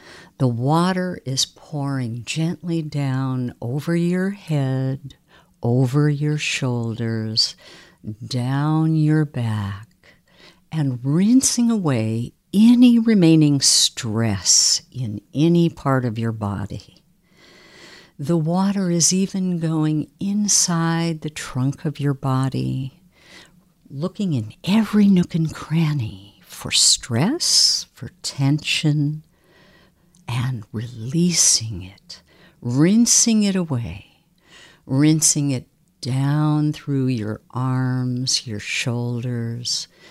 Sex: female